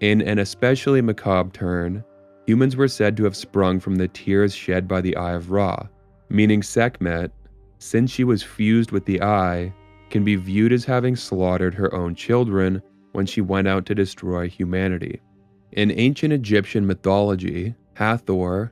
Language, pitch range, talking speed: English, 90-105 Hz, 160 wpm